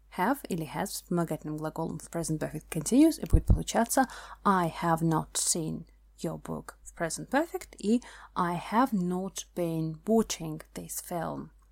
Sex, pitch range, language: female, 160-215 Hz, Russian